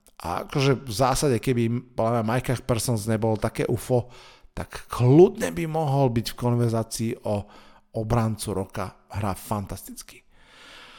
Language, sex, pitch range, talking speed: Slovak, male, 115-140 Hz, 120 wpm